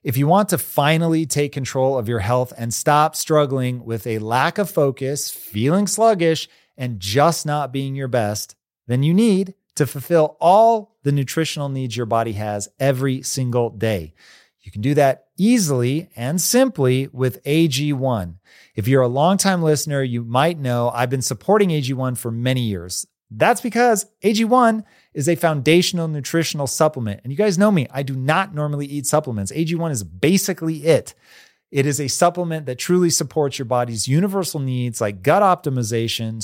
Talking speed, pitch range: 170 wpm, 125-165 Hz